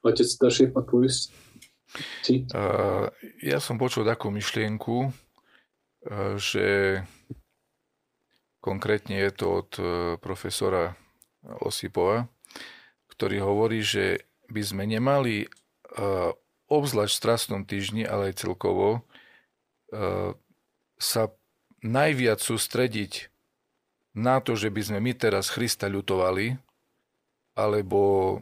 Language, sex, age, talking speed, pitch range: Slovak, male, 40-59, 80 wpm, 100-125 Hz